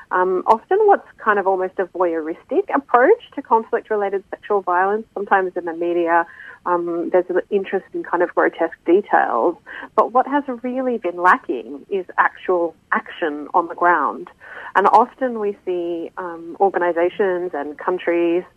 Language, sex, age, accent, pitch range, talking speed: English, female, 30-49, Australian, 170-210 Hz, 150 wpm